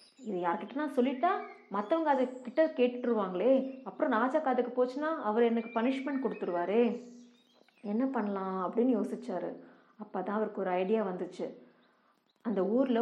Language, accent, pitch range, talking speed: Tamil, native, 200-265 Hz, 120 wpm